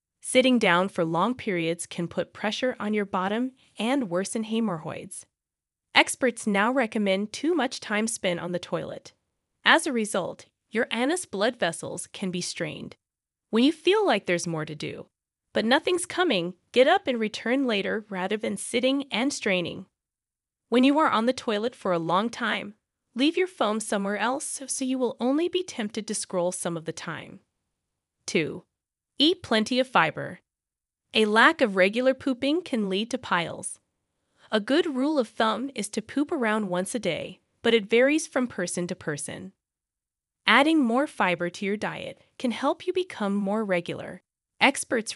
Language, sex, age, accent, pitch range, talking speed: English, female, 20-39, American, 190-265 Hz, 170 wpm